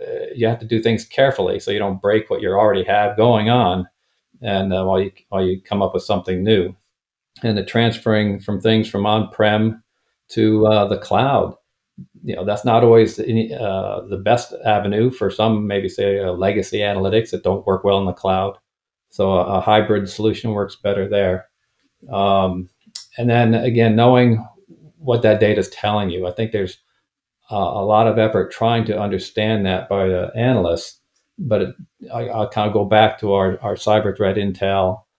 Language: English